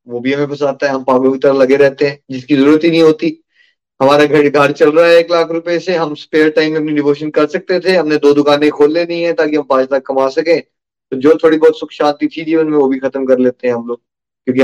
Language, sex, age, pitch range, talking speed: Hindi, male, 30-49, 145-205 Hz, 265 wpm